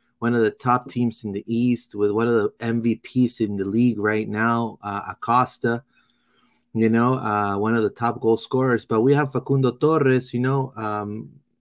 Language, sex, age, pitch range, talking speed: English, male, 30-49, 115-140 Hz, 190 wpm